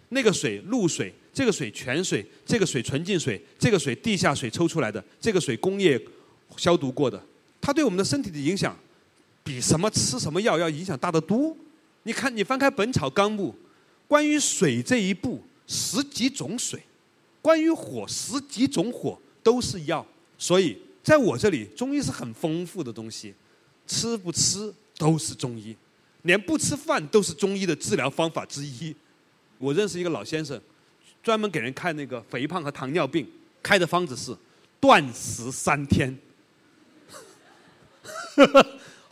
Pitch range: 135-215 Hz